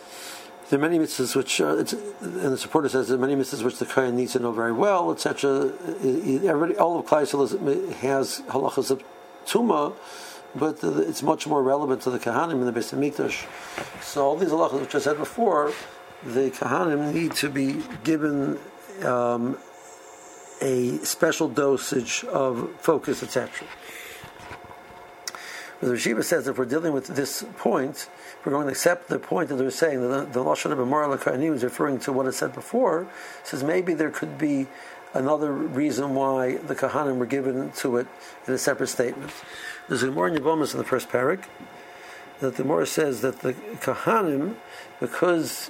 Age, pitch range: 60-79, 130-155 Hz